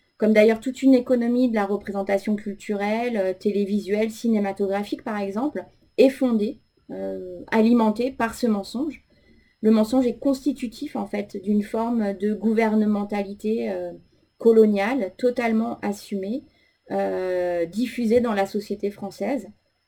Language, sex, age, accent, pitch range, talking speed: French, female, 30-49, French, 200-235 Hz, 120 wpm